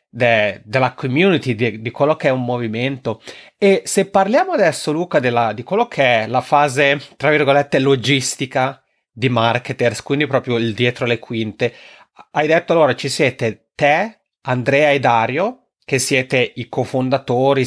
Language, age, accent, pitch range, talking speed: Italian, 30-49, native, 125-150 Hz, 145 wpm